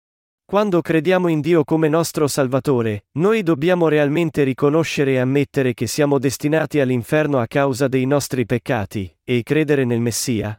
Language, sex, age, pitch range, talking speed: Italian, male, 40-59, 125-160 Hz, 145 wpm